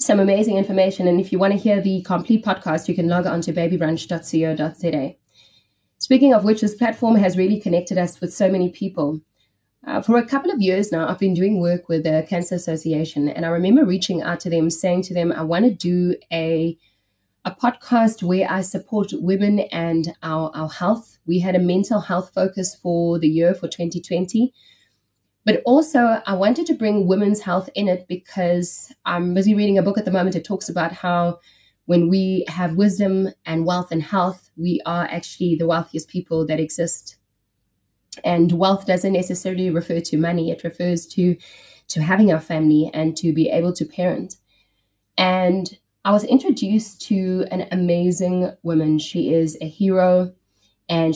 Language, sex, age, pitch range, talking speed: English, female, 20-39, 165-190 Hz, 180 wpm